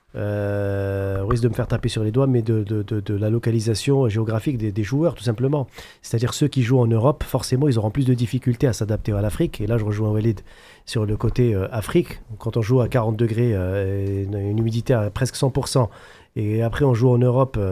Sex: male